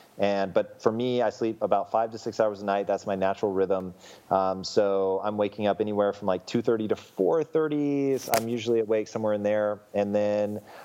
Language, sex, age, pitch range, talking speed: English, male, 30-49, 95-110 Hz, 200 wpm